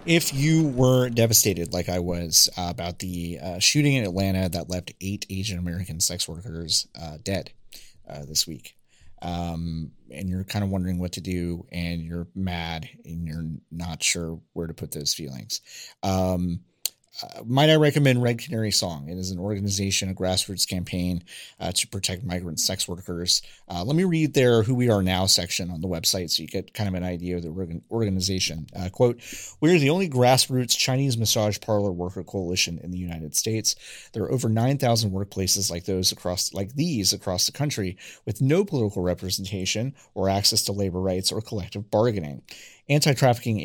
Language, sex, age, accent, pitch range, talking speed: English, male, 30-49, American, 90-115 Hz, 180 wpm